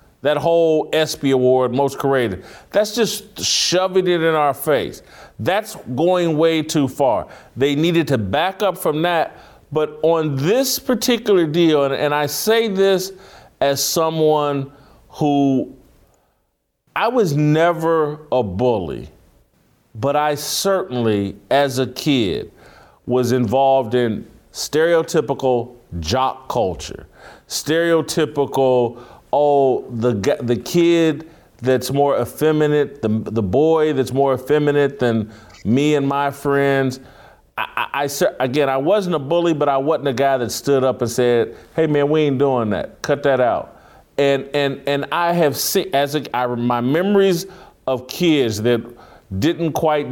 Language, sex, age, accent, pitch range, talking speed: English, male, 40-59, American, 130-160 Hz, 140 wpm